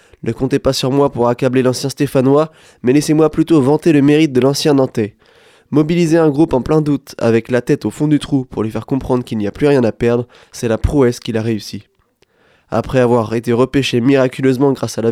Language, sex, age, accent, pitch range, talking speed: French, male, 20-39, French, 120-145 Hz, 220 wpm